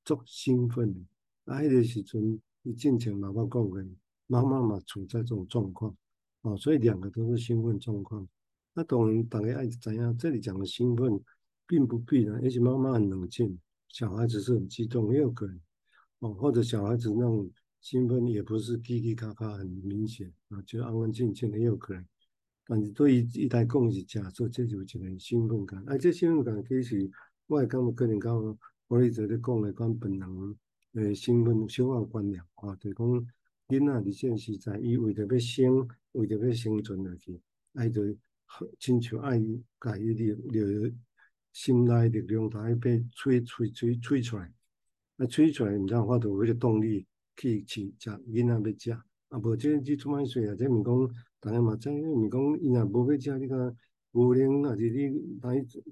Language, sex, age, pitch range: Chinese, male, 50-69, 105-125 Hz